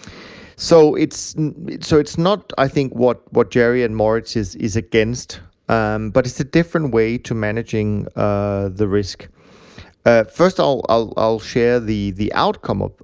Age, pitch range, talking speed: 30-49, 105-125 Hz, 165 wpm